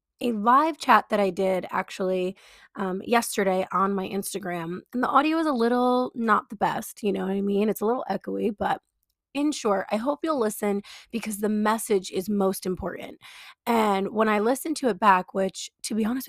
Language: English